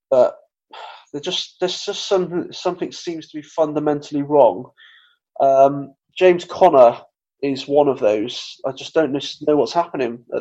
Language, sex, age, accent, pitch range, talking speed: English, male, 20-39, British, 135-150 Hz, 145 wpm